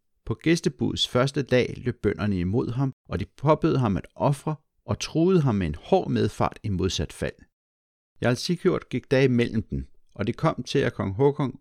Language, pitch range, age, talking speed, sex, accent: Danish, 90-135 Hz, 60-79, 190 wpm, male, native